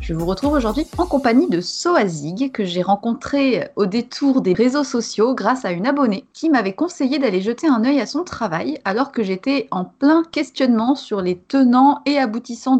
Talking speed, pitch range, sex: 190 wpm, 205-270 Hz, female